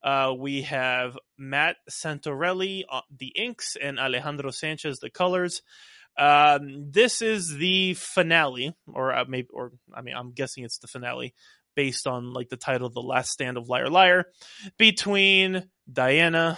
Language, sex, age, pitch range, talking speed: English, male, 20-39, 130-160 Hz, 150 wpm